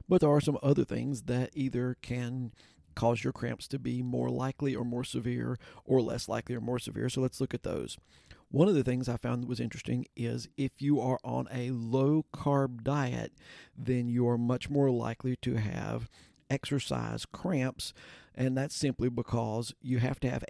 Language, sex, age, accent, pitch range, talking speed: English, male, 50-69, American, 115-135 Hz, 190 wpm